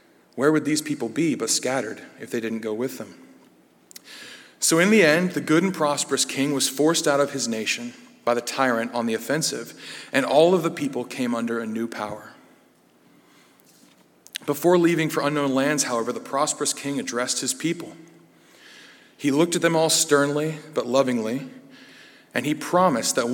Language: English